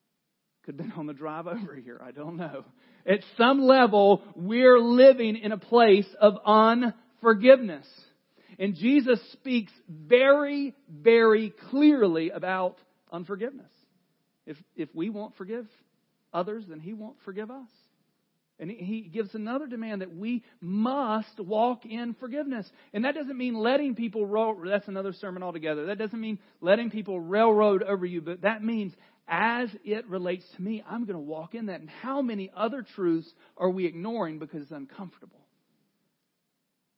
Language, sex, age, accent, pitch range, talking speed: English, male, 40-59, American, 175-230 Hz, 155 wpm